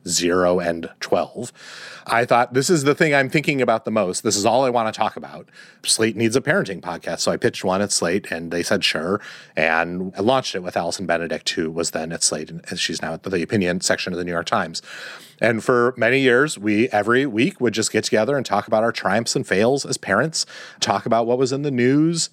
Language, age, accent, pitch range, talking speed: English, 30-49, American, 100-130 Hz, 235 wpm